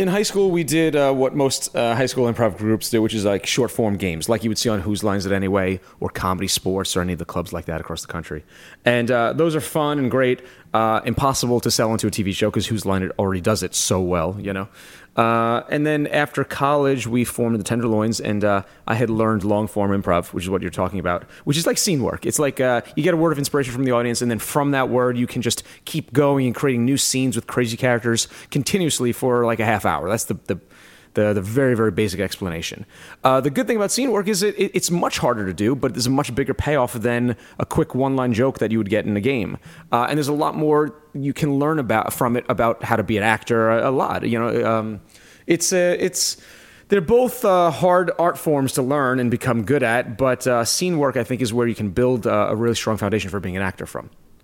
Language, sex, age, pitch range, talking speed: English, male, 30-49, 105-140 Hz, 255 wpm